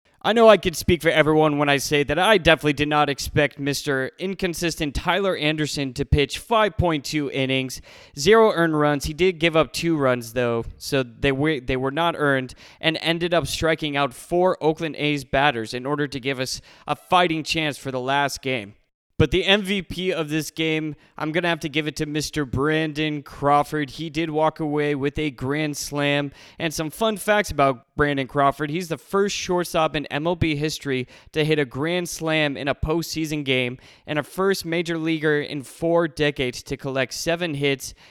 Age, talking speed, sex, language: 20-39, 190 wpm, male, English